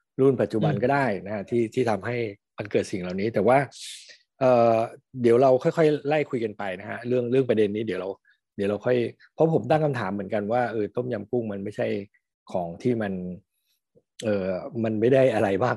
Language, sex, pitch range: Thai, male, 105-130 Hz